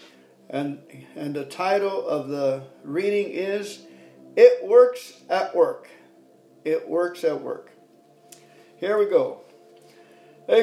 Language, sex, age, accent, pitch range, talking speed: English, male, 50-69, American, 145-210 Hz, 115 wpm